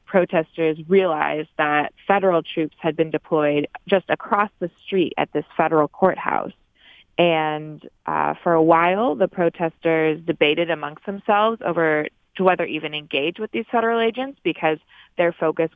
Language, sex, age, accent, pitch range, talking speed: English, female, 20-39, American, 150-180 Hz, 145 wpm